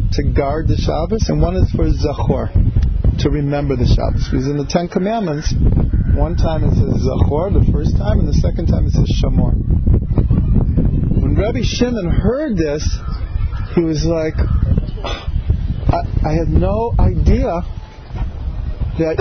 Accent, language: American, English